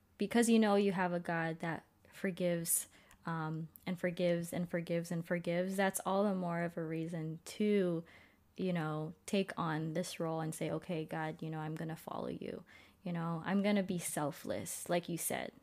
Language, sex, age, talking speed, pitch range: English, female, 20-39, 195 wpm, 165-205 Hz